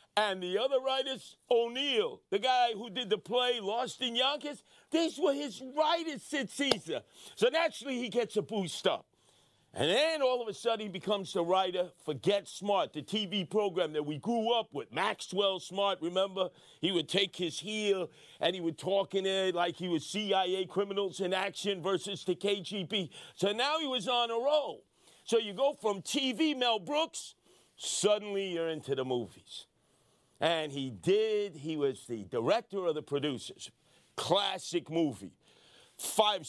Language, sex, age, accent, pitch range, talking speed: English, male, 50-69, American, 185-250 Hz, 170 wpm